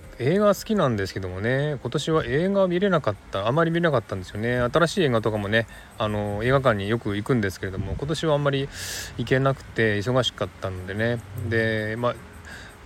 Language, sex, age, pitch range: Japanese, male, 20-39, 100-125 Hz